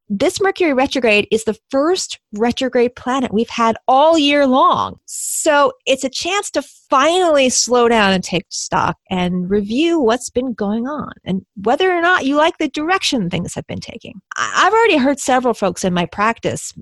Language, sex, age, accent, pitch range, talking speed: English, female, 30-49, American, 215-295 Hz, 180 wpm